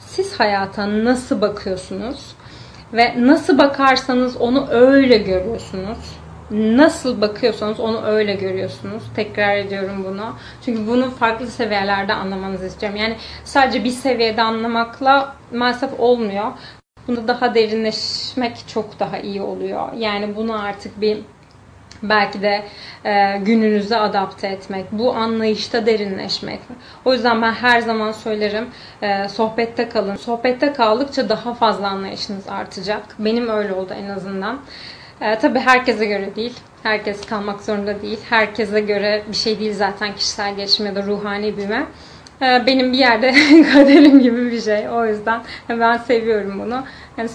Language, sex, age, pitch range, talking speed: Turkish, female, 30-49, 205-245 Hz, 135 wpm